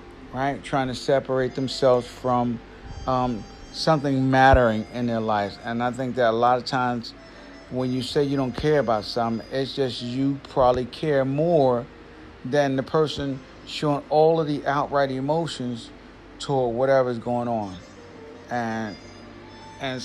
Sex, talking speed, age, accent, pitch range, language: male, 150 wpm, 40-59, American, 110-145 Hz, English